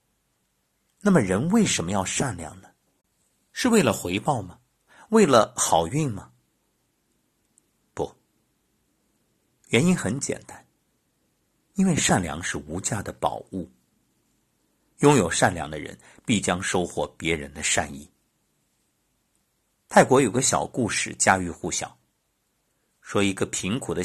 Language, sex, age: Chinese, male, 50-69